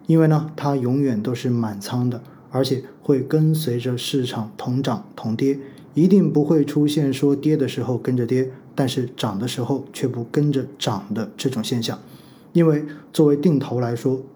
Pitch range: 130-165 Hz